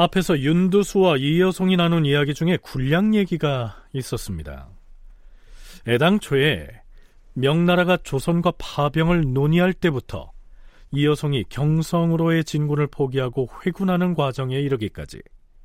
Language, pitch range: Korean, 135-170 Hz